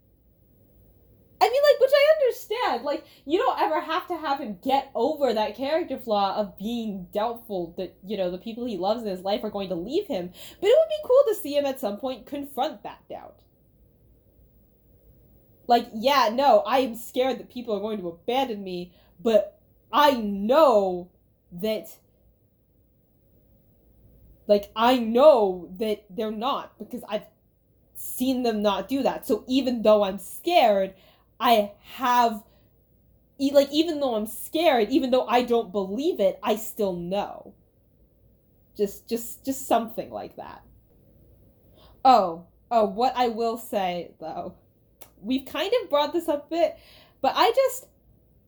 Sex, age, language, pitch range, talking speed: female, 10-29, English, 195-275 Hz, 155 wpm